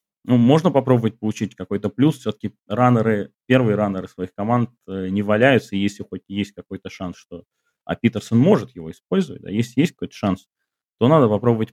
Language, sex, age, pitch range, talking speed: Russian, male, 30-49, 95-125 Hz, 170 wpm